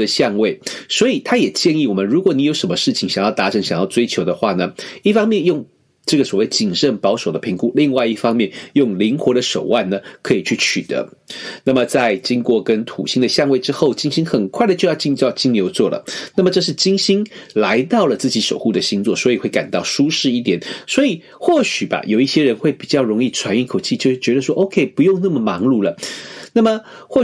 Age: 40-59